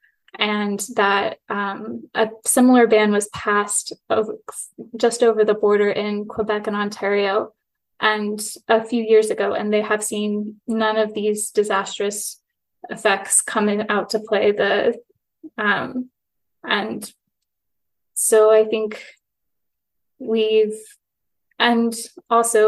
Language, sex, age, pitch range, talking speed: English, female, 10-29, 210-225 Hz, 115 wpm